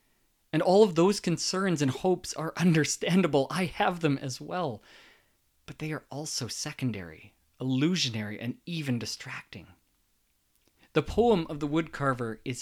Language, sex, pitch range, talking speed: English, male, 125-160 Hz, 140 wpm